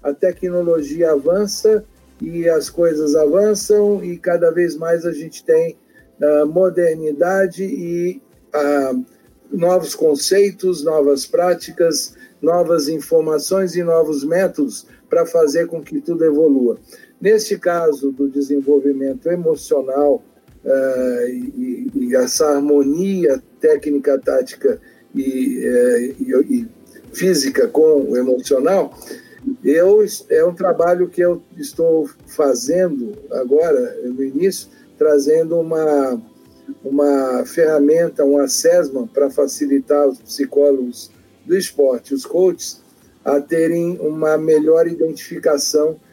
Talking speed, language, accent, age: 100 wpm, English, Brazilian, 60-79